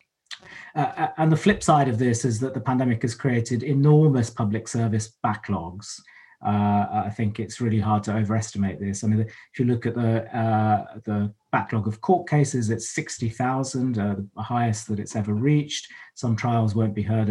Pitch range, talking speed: 105-130 Hz, 185 wpm